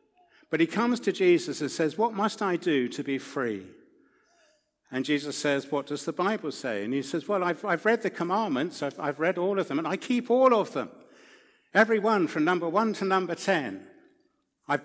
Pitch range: 135-205 Hz